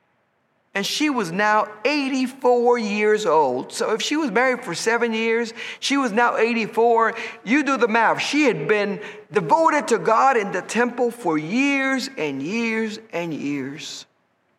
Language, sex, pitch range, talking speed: English, male, 205-260 Hz, 155 wpm